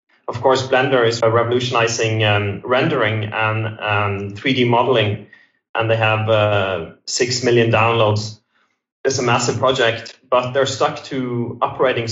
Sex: male